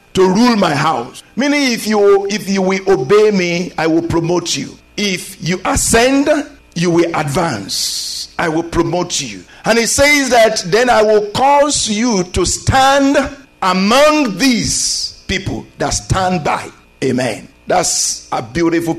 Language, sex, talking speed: English, male, 150 wpm